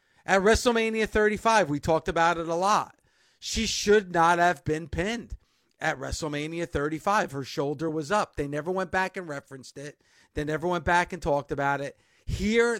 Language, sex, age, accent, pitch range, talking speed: English, male, 50-69, American, 155-200 Hz, 180 wpm